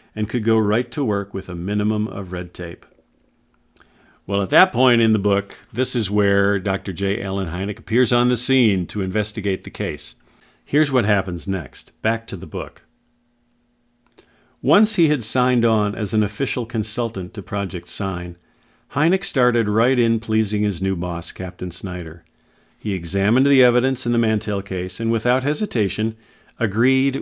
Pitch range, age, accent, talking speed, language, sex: 95-120 Hz, 50-69, American, 170 wpm, English, male